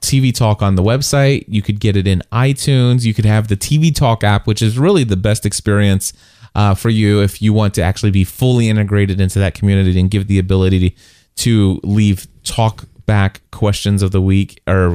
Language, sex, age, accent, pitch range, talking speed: English, male, 20-39, American, 95-115 Hz, 205 wpm